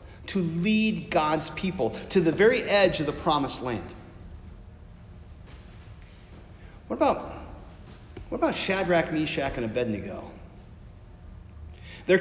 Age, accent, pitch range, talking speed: 40-59, American, 95-150 Hz, 105 wpm